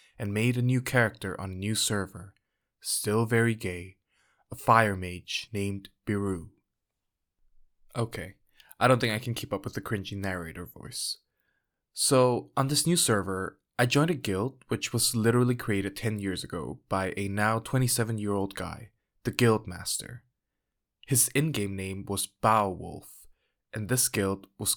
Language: English